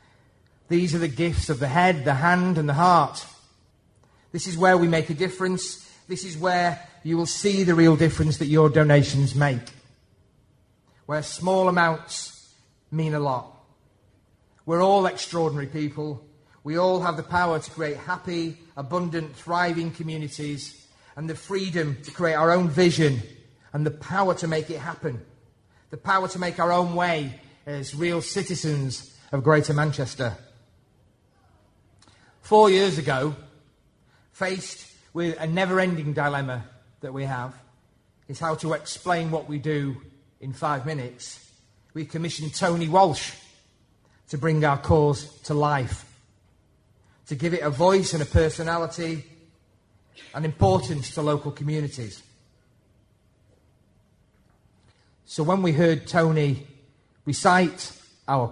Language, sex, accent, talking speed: English, male, British, 135 wpm